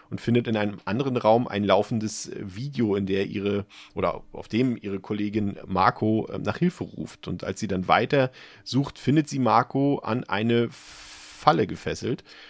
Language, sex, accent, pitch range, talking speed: German, male, German, 95-115 Hz, 165 wpm